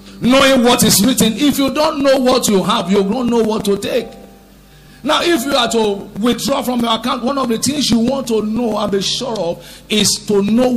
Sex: male